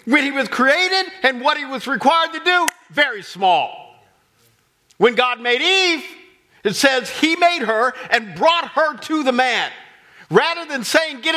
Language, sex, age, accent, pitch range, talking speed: English, male, 50-69, American, 260-335 Hz, 170 wpm